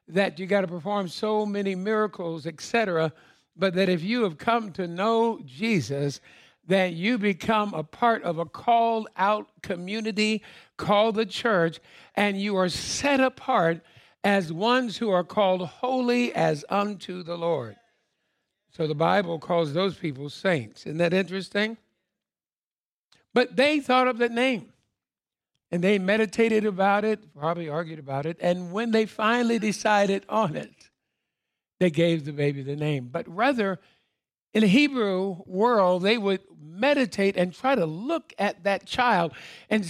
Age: 60-79